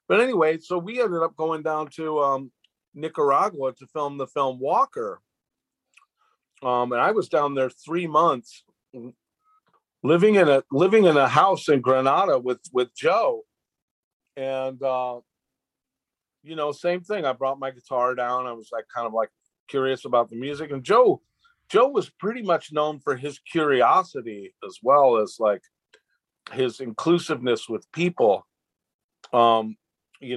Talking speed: 150 wpm